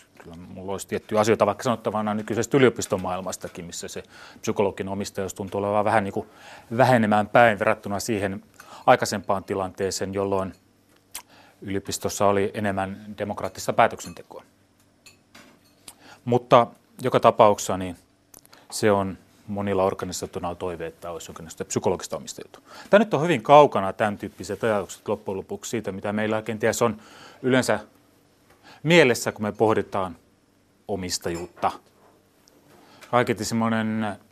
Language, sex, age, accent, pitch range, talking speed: Finnish, male, 30-49, native, 95-115 Hz, 110 wpm